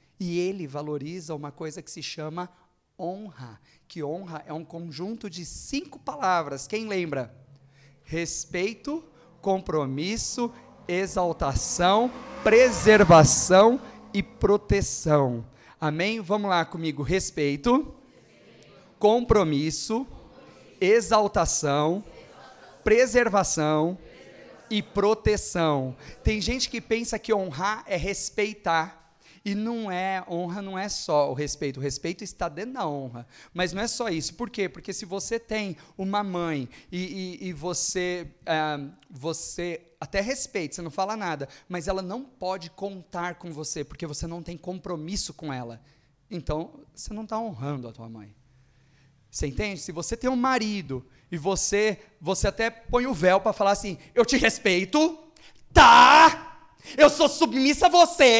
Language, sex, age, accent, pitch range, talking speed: Portuguese, male, 30-49, Brazilian, 155-215 Hz, 135 wpm